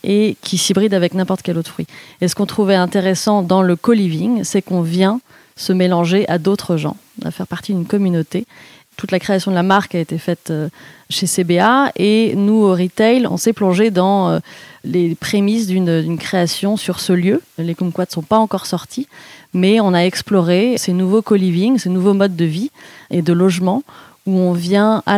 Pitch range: 175-210 Hz